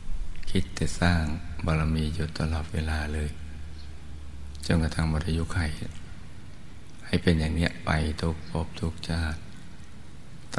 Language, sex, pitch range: Thai, male, 80-85 Hz